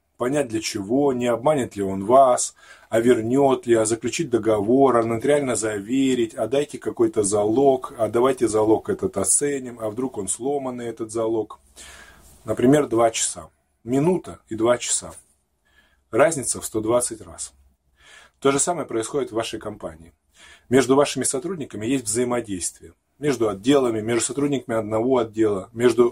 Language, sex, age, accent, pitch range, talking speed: Russian, male, 20-39, native, 110-135 Hz, 140 wpm